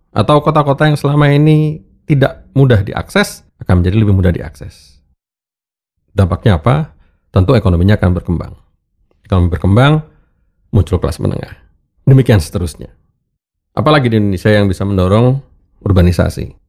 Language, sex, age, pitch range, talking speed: Indonesian, male, 40-59, 90-115 Hz, 120 wpm